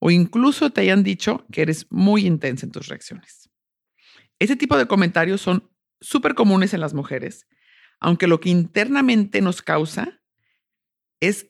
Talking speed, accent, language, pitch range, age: 150 wpm, Mexican, English, 150-205 Hz, 50-69